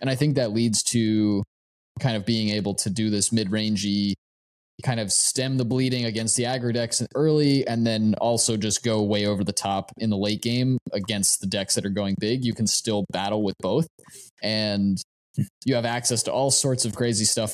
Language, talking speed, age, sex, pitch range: English, 205 wpm, 20-39, male, 100-120 Hz